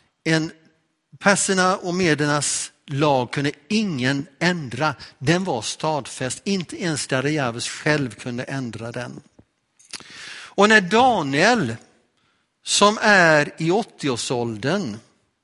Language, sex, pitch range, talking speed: Swedish, male, 125-165 Hz, 95 wpm